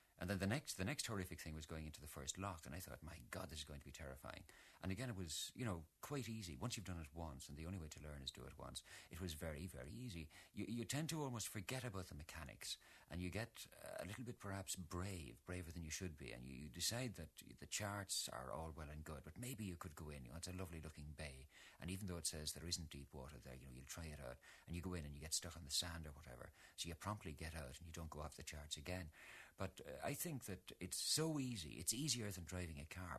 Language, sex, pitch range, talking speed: English, male, 75-95 Hz, 280 wpm